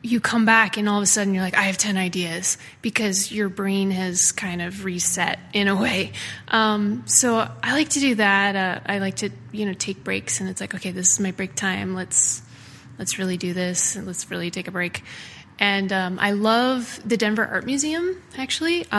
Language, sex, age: English, female, 20-39